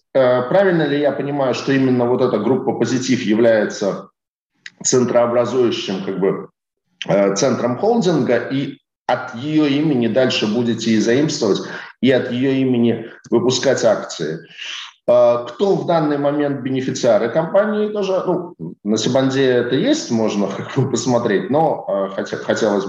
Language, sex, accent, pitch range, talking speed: Russian, male, native, 115-160 Hz, 115 wpm